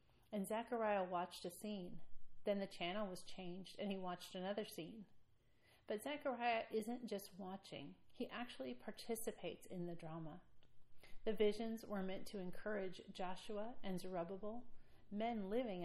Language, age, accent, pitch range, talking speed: English, 40-59, American, 175-210 Hz, 140 wpm